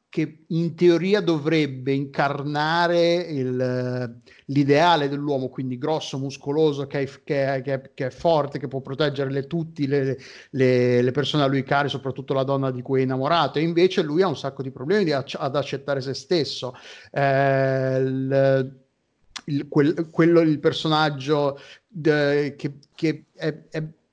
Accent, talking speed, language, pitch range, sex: native, 155 wpm, Italian, 135-160 Hz, male